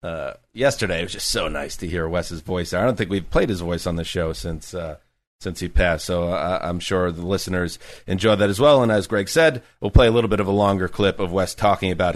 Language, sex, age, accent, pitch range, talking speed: English, male, 30-49, American, 90-120 Hz, 260 wpm